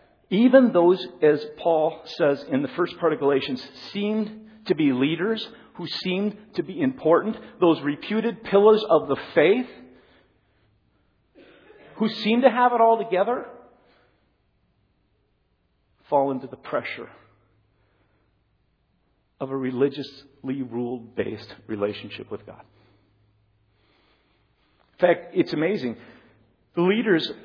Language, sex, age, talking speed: English, male, 50-69, 110 wpm